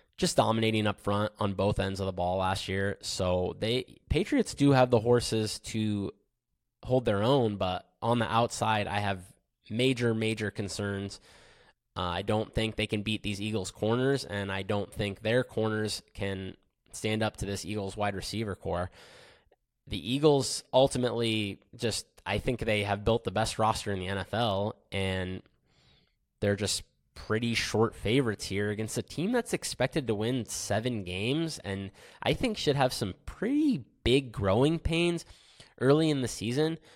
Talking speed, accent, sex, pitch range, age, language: 165 wpm, American, male, 100-130 Hz, 20-39, English